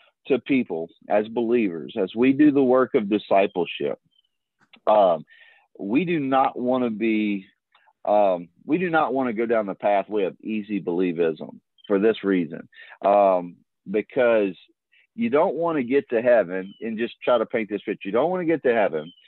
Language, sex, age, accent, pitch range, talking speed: English, male, 40-59, American, 100-150 Hz, 175 wpm